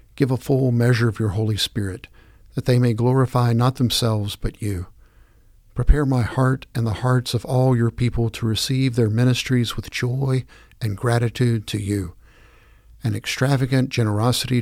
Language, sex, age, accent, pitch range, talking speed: English, male, 50-69, American, 105-125 Hz, 160 wpm